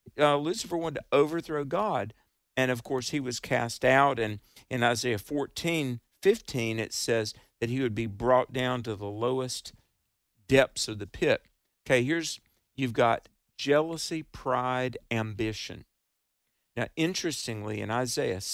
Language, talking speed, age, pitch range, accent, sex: English, 140 wpm, 50-69, 115-140 Hz, American, male